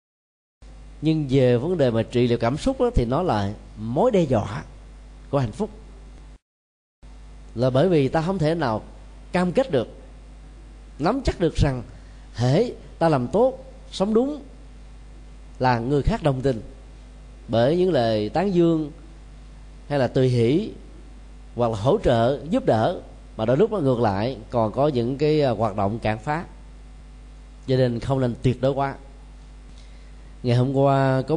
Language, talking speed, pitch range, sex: Vietnamese, 160 wpm, 110-140 Hz, male